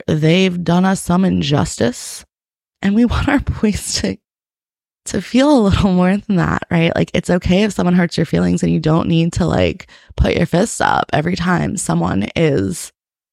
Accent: American